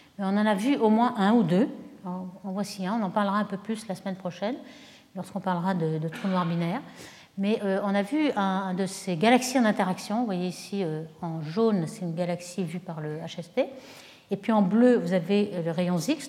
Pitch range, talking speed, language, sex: 185-245 Hz, 230 wpm, French, female